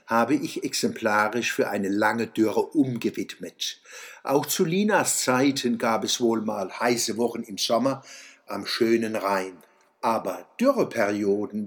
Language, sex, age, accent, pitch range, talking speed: German, male, 60-79, German, 115-165 Hz, 130 wpm